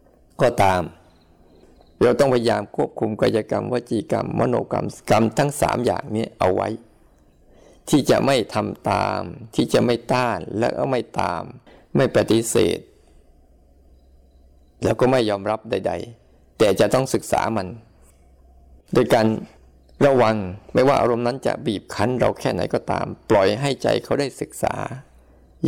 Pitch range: 80-115 Hz